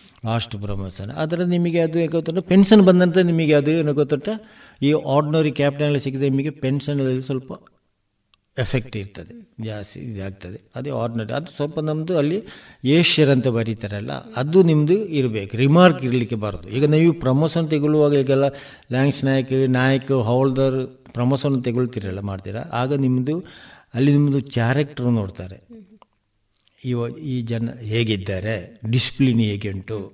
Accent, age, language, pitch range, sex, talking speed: native, 60-79, Kannada, 115-145 Hz, male, 125 wpm